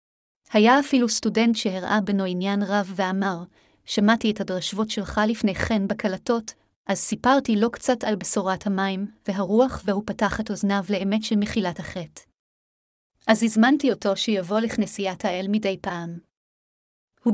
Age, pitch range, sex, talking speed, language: 30-49, 200-230 Hz, female, 140 wpm, Hebrew